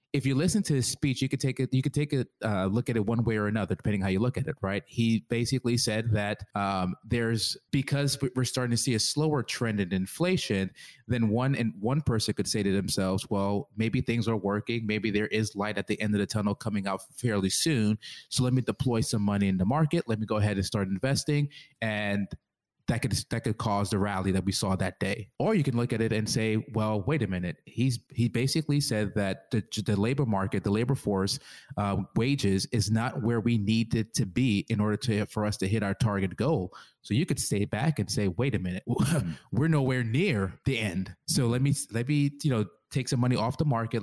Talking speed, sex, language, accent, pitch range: 235 wpm, male, English, American, 105-130 Hz